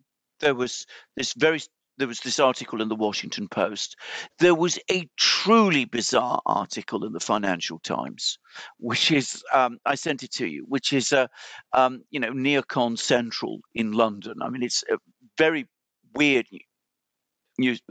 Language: English